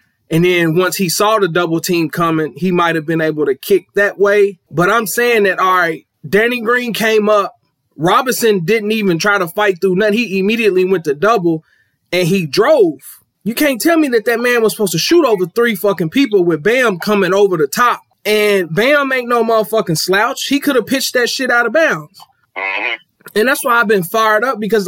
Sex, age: male, 20-39